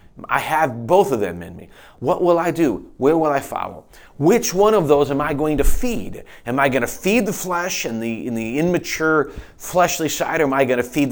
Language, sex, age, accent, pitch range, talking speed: English, male, 40-59, American, 115-150 Hz, 240 wpm